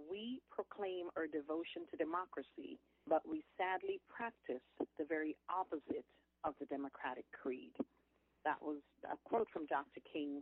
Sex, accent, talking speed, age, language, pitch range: female, American, 140 wpm, 40-59, English, 150-245 Hz